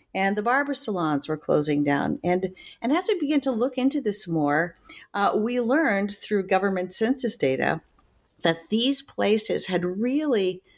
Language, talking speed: English, 160 wpm